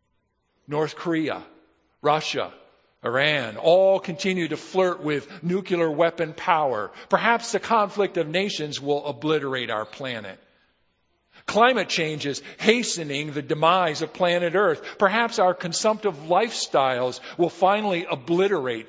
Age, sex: 50-69, male